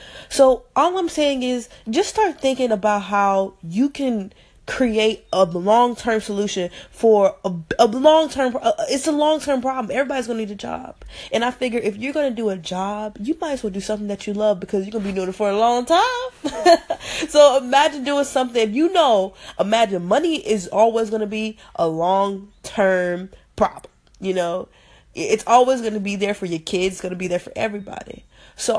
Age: 20-39